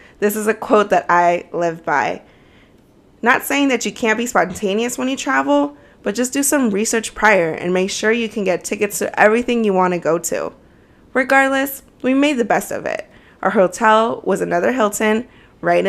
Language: English